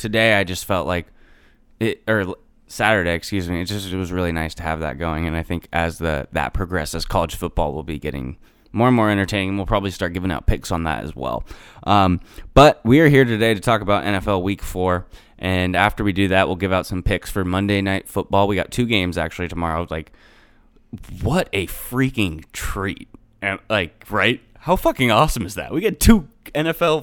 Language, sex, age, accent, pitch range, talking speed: English, male, 20-39, American, 90-110 Hz, 210 wpm